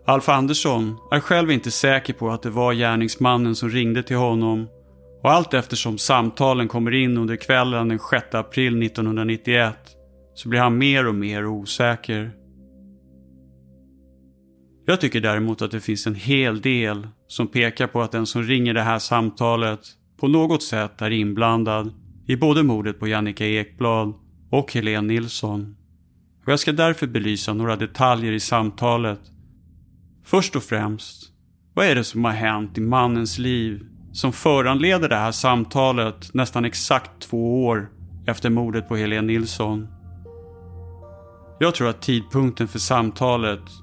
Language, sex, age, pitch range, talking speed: Swedish, male, 30-49, 100-125 Hz, 145 wpm